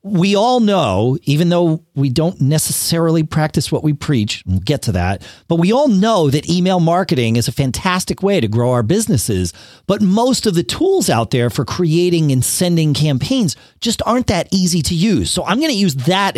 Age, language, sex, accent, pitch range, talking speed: 40-59, English, male, American, 130-185 Hz, 200 wpm